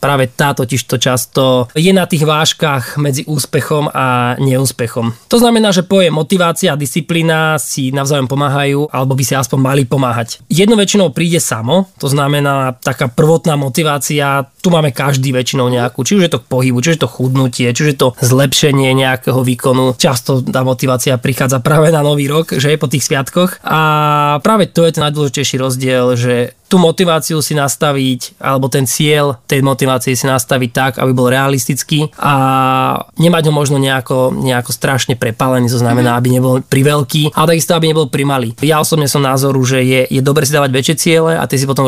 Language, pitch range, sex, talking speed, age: Slovak, 130-155 Hz, male, 185 wpm, 20-39